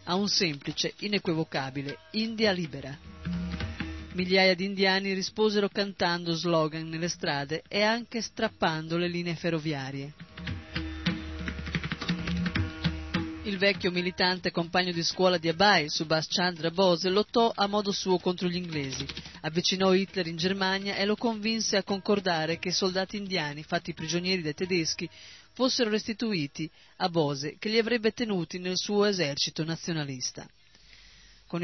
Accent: native